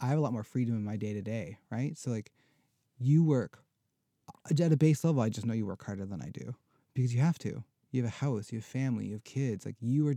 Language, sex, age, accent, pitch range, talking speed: English, male, 30-49, American, 110-135 Hz, 260 wpm